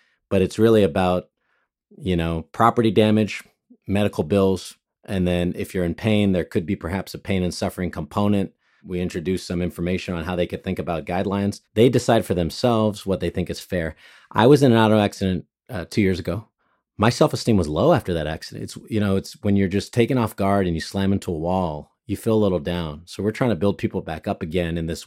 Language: English